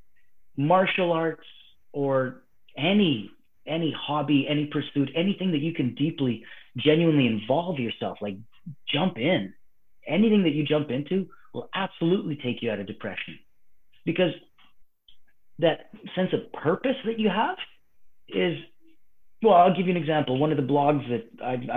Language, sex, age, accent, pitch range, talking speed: English, male, 30-49, American, 125-160 Hz, 145 wpm